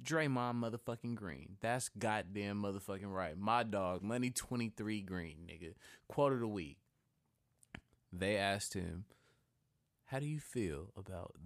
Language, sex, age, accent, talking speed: English, male, 20-39, American, 130 wpm